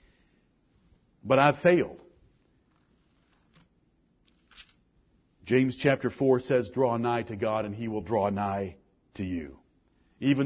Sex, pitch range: male, 125-180 Hz